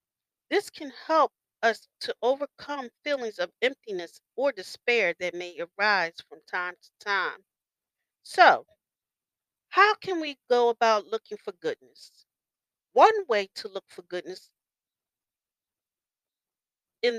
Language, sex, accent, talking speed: English, female, American, 120 wpm